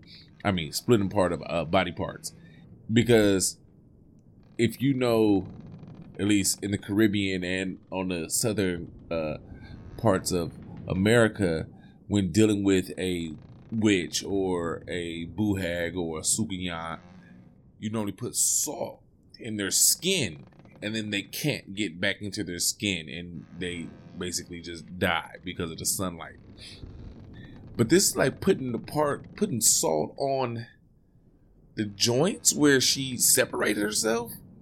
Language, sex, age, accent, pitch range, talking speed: English, male, 20-39, American, 90-120 Hz, 135 wpm